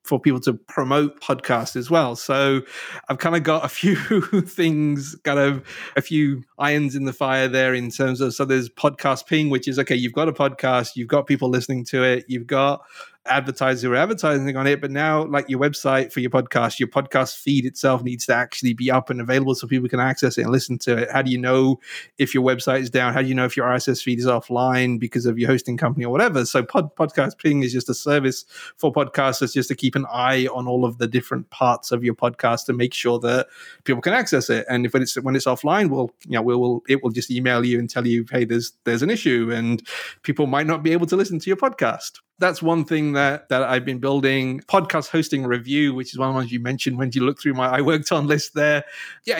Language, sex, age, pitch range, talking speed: English, male, 30-49, 125-145 Hz, 245 wpm